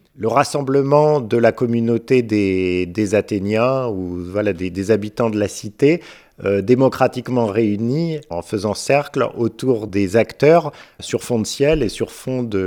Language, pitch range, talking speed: French, 95-120 Hz, 160 wpm